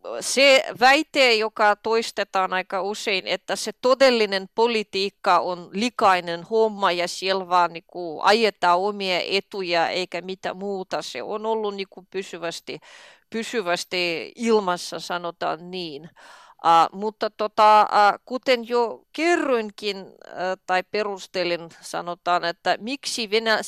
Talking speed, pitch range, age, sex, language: 115 wpm, 180-225 Hz, 30-49, female, Finnish